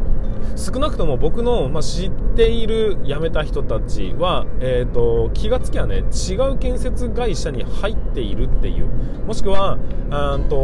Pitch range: 110-155 Hz